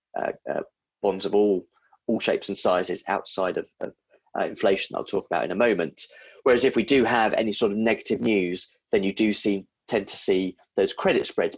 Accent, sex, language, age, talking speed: British, male, English, 30-49, 205 wpm